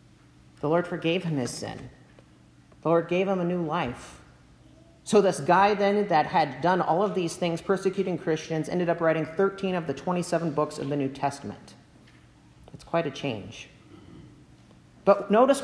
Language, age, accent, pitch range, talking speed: English, 40-59, American, 150-205 Hz, 170 wpm